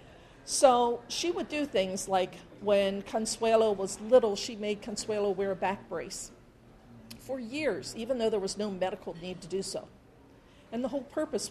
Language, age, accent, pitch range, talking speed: English, 50-69, American, 195-250 Hz, 170 wpm